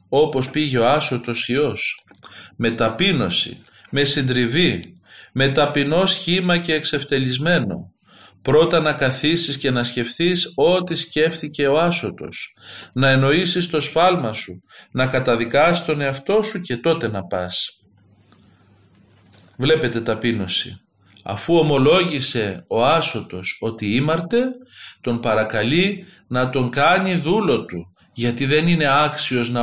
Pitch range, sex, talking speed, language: 115-170 Hz, male, 115 wpm, Greek